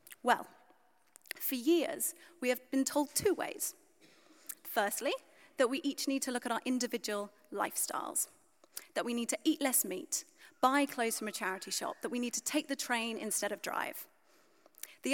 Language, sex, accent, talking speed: English, female, British, 175 wpm